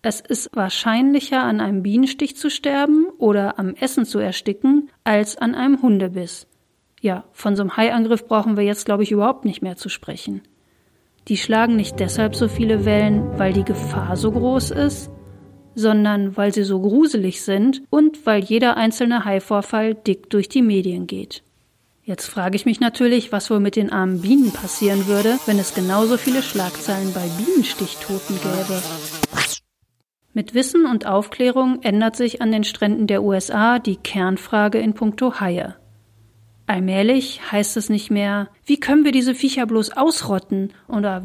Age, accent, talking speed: 40-59, German, 160 wpm